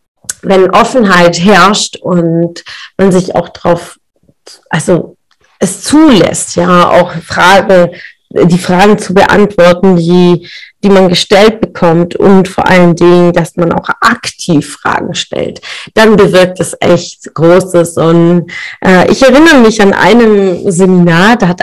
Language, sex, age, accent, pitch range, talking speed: German, female, 30-49, German, 175-225 Hz, 135 wpm